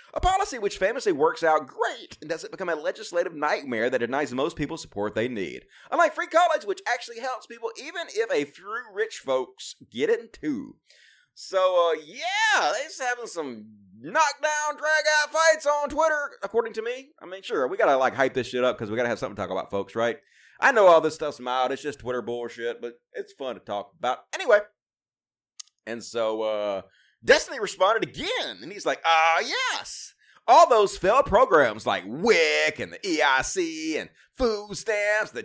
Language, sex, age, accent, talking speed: English, male, 30-49, American, 190 wpm